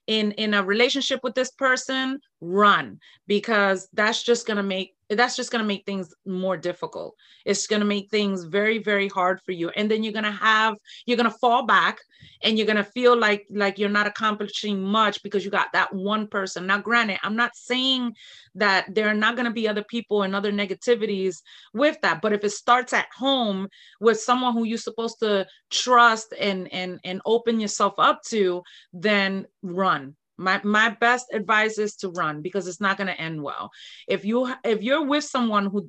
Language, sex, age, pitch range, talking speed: English, female, 30-49, 195-235 Hz, 205 wpm